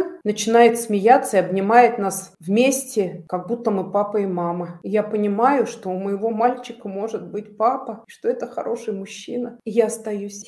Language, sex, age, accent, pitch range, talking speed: Russian, female, 40-59, native, 190-235 Hz, 165 wpm